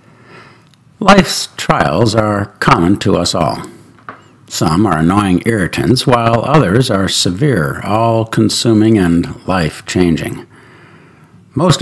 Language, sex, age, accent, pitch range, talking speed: English, male, 60-79, American, 95-125 Hz, 95 wpm